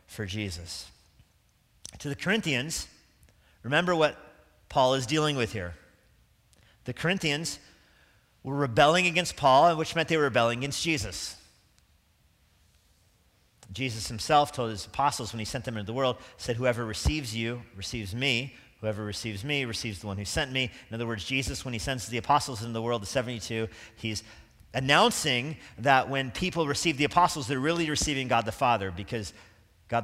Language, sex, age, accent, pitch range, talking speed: English, male, 40-59, American, 110-145 Hz, 165 wpm